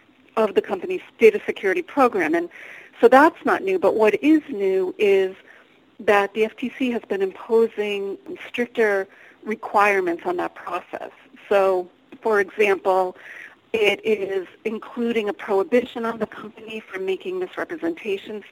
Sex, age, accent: female, 40-59, American